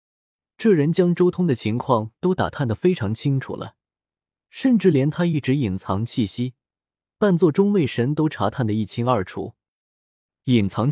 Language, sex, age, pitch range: Chinese, male, 20-39, 105-160 Hz